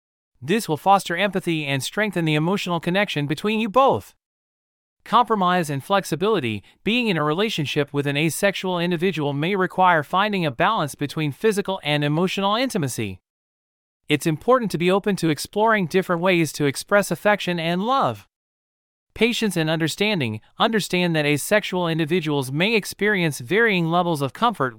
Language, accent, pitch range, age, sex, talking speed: English, American, 150-205 Hz, 30-49, male, 145 wpm